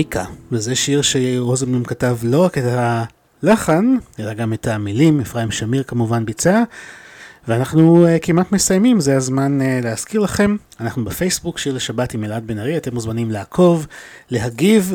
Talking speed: 150 wpm